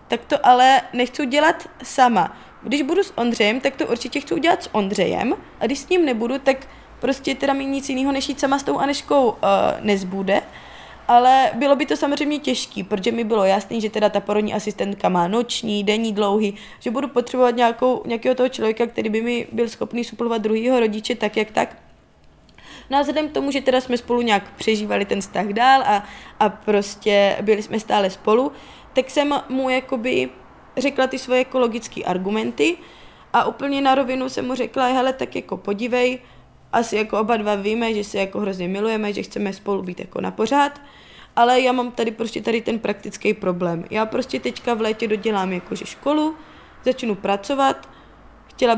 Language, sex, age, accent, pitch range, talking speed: Czech, female, 20-39, native, 210-260 Hz, 185 wpm